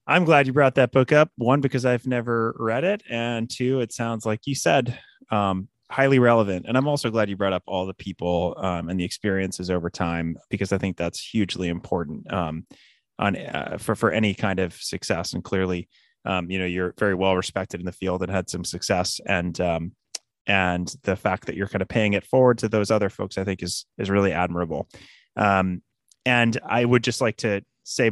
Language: English